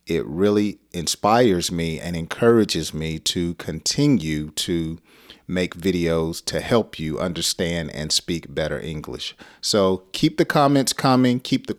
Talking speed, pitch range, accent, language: 140 wpm, 85-125 Hz, American, English